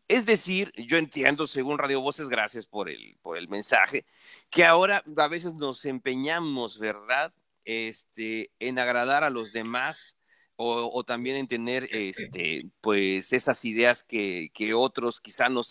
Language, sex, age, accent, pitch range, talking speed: Spanish, male, 40-59, Mexican, 115-155 Hz, 155 wpm